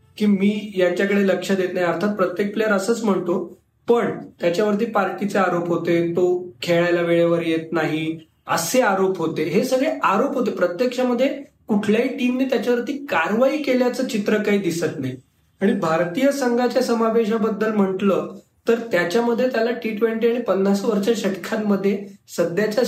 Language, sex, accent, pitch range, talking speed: Marathi, male, native, 185-225 Hz, 135 wpm